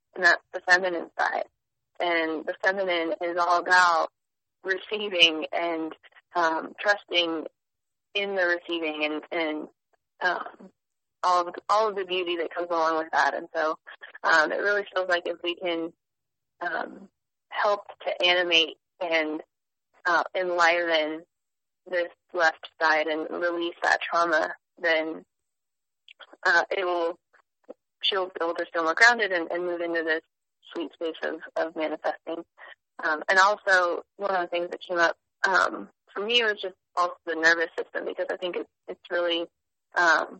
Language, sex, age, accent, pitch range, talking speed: English, female, 20-39, American, 165-190 Hz, 150 wpm